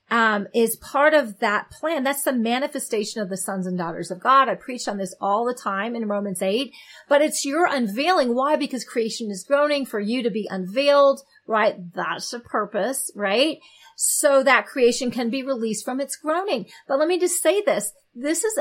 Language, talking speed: English, 200 wpm